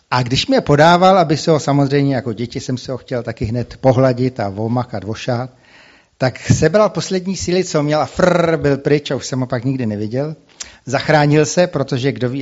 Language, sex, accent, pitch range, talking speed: Czech, male, native, 120-160 Hz, 200 wpm